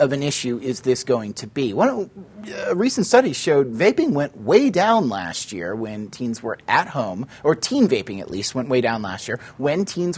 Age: 30-49